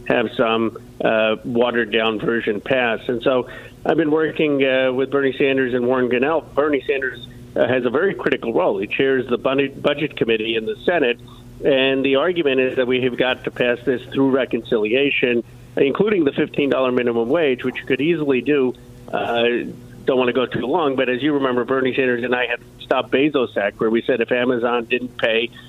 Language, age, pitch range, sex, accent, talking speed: English, 50-69, 120-135 Hz, male, American, 200 wpm